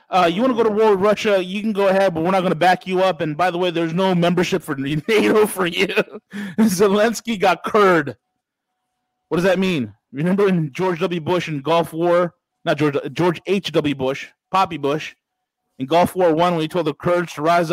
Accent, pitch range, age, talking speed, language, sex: American, 175-220 Hz, 30-49, 225 wpm, English, male